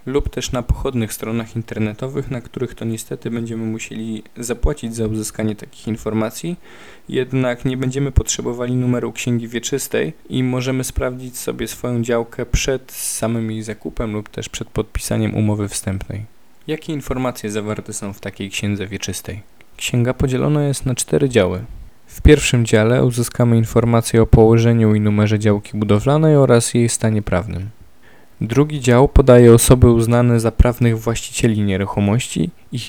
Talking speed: 145 wpm